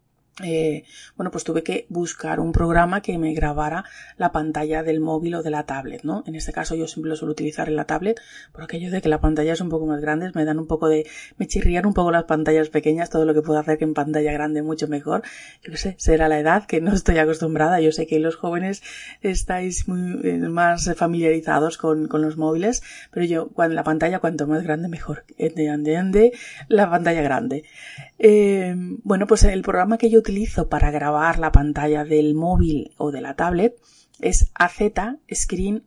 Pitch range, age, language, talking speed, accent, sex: 150-185 Hz, 20-39, Spanish, 205 wpm, Spanish, female